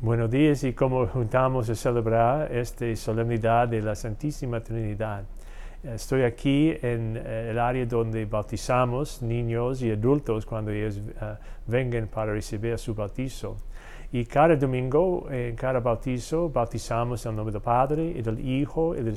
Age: 40-59